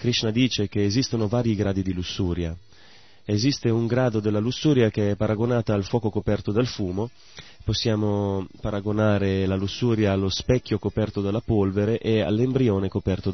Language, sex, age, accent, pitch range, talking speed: Italian, male, 30-49, native, 95-115 Hz, 150 wpm